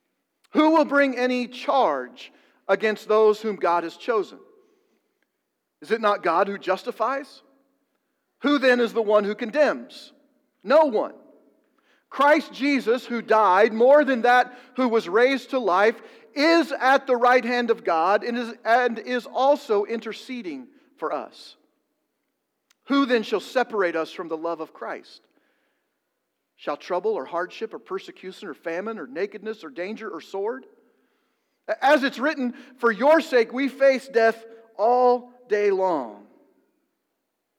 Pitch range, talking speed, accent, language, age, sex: 205-285 Hz, 140 wpm, American, English, 50-69, male